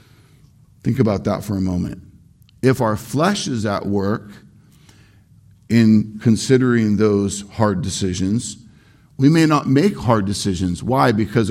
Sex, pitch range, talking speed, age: male, 105-130 Hz, 130 wpm, 50-69